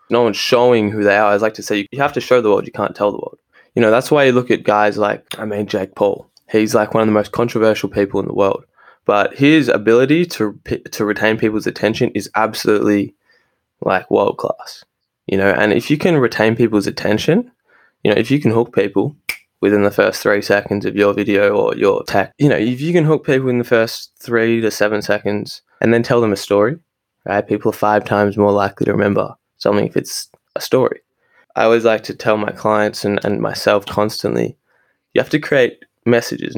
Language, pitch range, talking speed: English, 105-120 Hz, 220 wpm